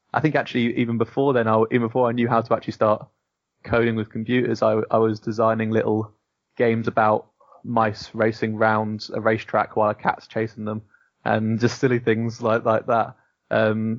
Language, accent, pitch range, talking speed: English, British, 110-115 Hz, 185 wpm